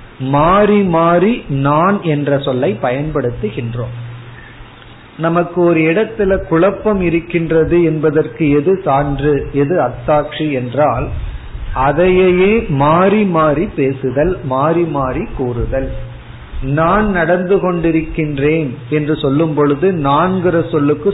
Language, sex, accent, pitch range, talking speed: Tamil, male, native, 135-175 Hz, 80 wpm